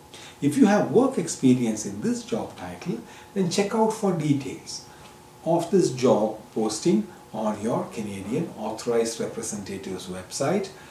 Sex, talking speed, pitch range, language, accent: male, 130 wpm, 115-170 Hz, English, Indian